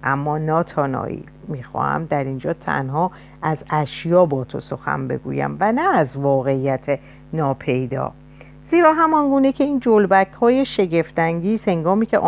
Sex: female